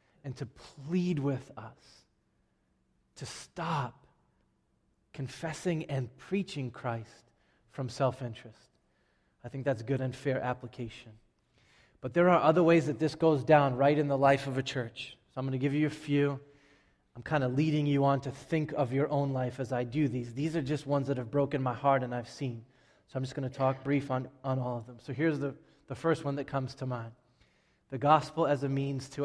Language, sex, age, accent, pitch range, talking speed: English, male, 20-39, American, 125-145 Hz, 205 wpm